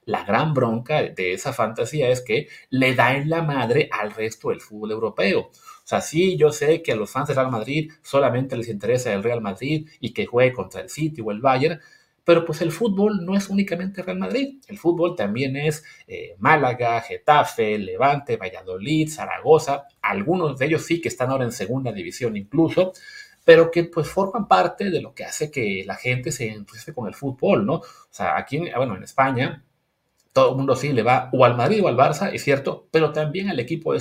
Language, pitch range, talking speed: English, 120-170 Hz, 210 wpm